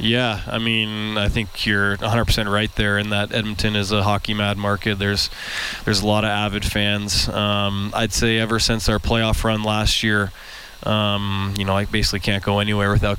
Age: 20-39